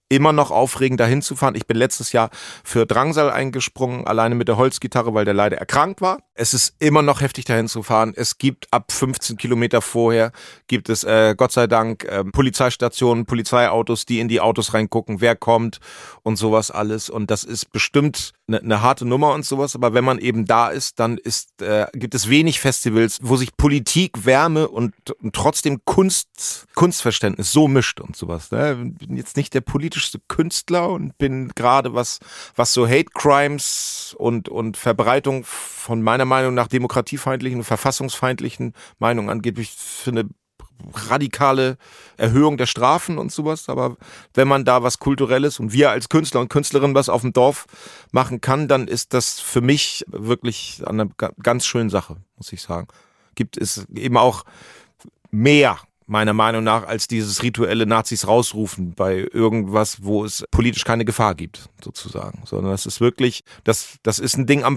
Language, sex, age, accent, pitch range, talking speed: German, male, 40-59, German, 110-135 Hz, 175 wpm